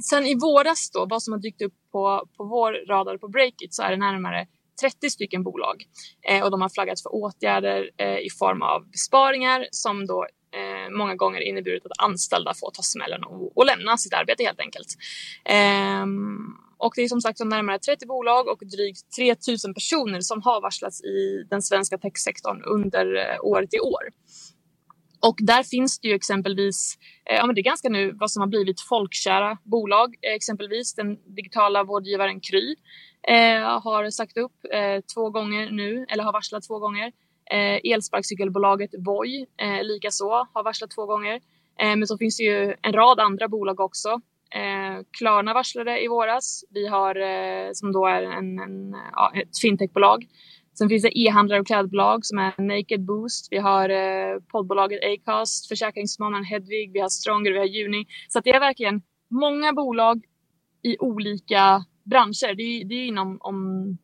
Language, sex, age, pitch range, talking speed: Swedish, female, 20-39, 195-230 Hz, 175 wpm